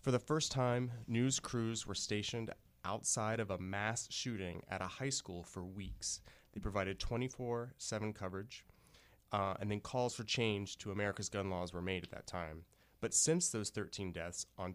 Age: 30-49